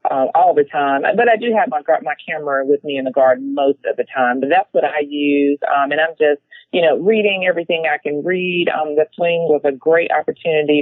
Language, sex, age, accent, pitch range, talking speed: English, female, 40-59, American, 150-185 Hz, 240 wpm